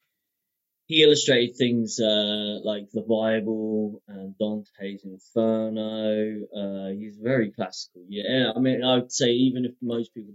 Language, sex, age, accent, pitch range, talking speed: English, male, 20-39, British, 100-120 Hz, 135 wpm